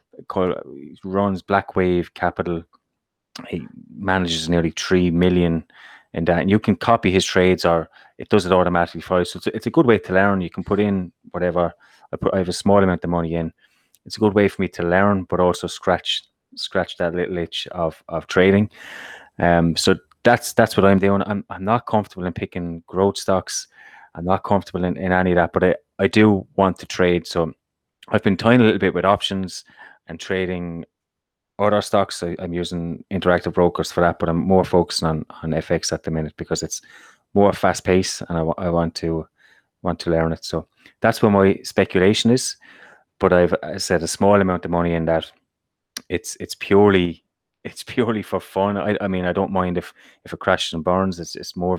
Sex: male